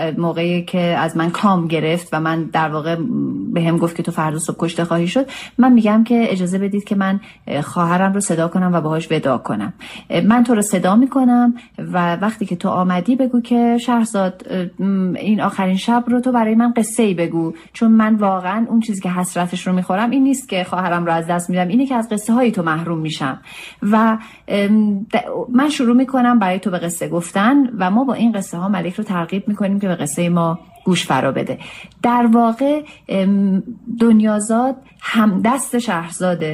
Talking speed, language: 180 wpm, Persian